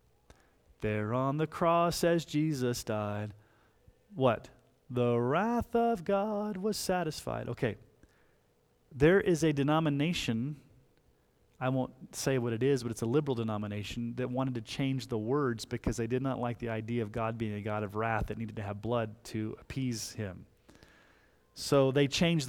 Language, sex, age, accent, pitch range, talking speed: English, male, 30-49, American, 120-155 Hz, 165 wpm